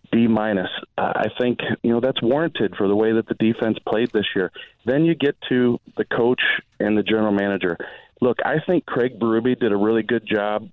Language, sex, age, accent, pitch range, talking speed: English, male, 30-49, American, 105-120 Hz, 215 wpm